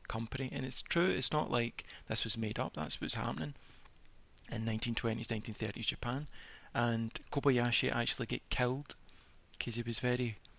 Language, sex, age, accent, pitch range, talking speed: English, male, 30-49, British, 110-130 Hz, 155 wpm